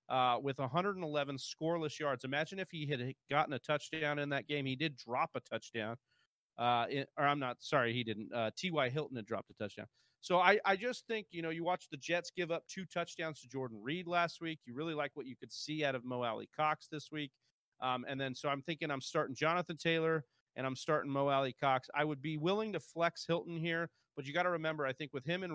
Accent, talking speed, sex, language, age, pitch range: American, 240 wpm, male, English, 40-59, 125-160 Hz